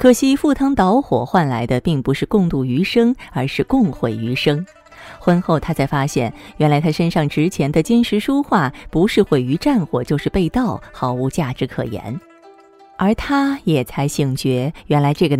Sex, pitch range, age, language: female, 135-200 Hz, 30-49, Chinese